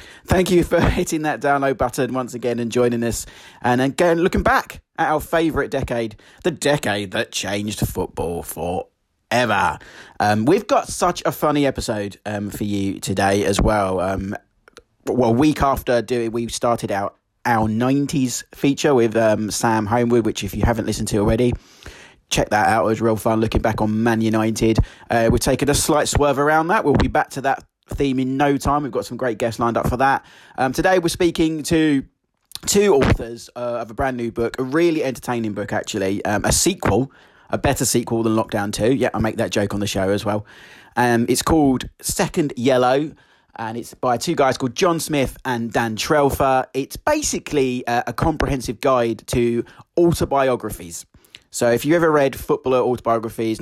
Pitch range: 110-140 Hz